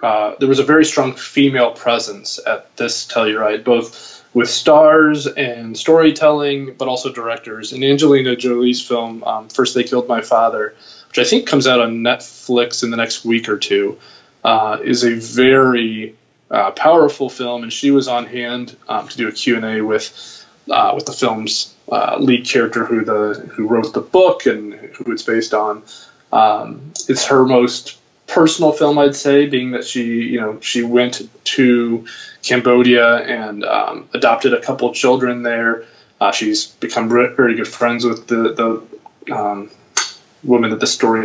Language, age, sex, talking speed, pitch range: English, 20-39, male, 175 wpm, 115-135 Hz